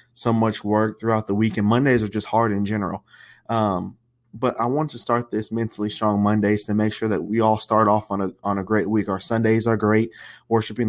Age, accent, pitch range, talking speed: 20-39, American, 100-115 Hz, 230 wpm